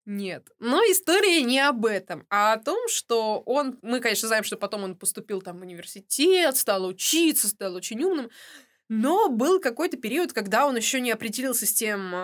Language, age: Russian, 20-39